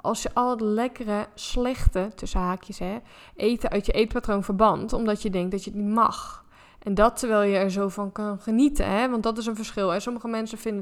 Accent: Dutch